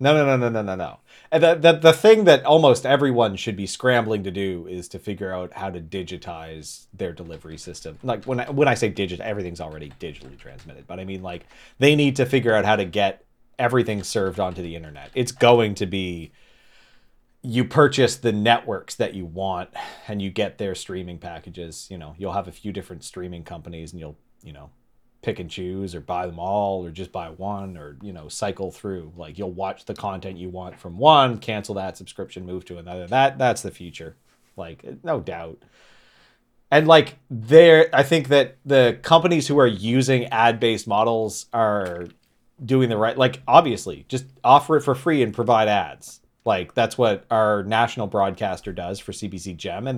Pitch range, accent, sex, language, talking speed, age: 90-125 Hz, American, male, English, 195 wpm, 30-49